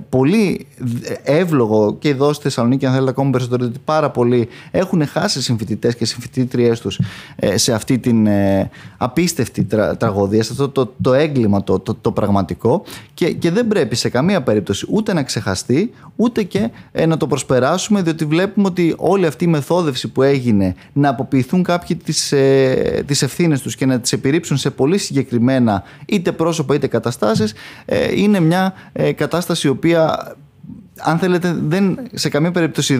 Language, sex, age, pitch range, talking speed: Greek, male, 20-39, 120-160 Hz, 150 wpm